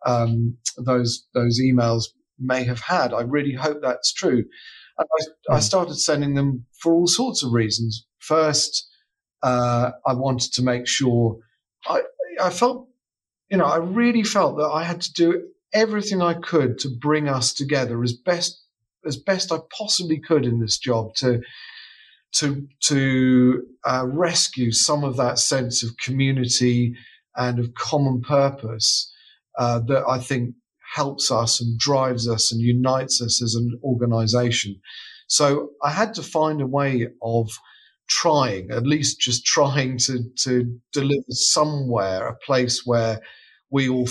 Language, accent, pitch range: English, British, 120-155 Hz